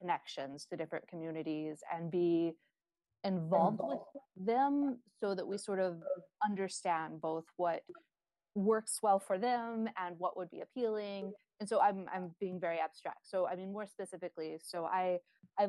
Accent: American